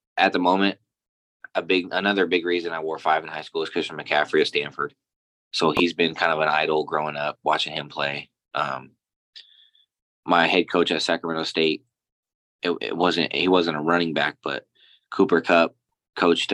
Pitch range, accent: 75-90 Hz, American